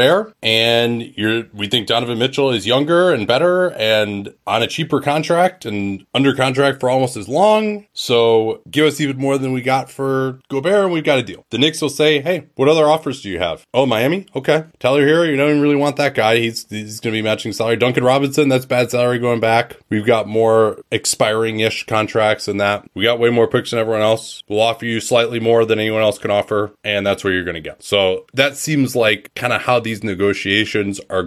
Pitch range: 100-140 Hz